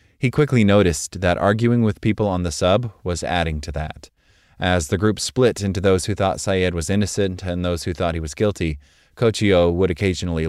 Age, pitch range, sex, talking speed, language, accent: 30-49, 85-110 Hz, male, 200 wpm, English, American